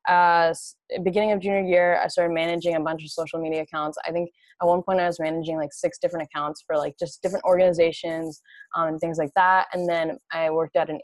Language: English